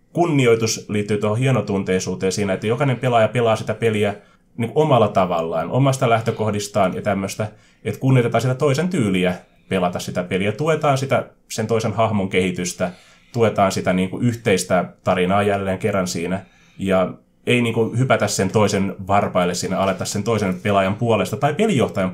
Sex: male